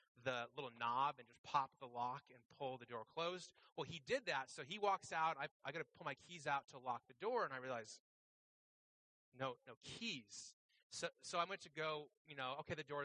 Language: English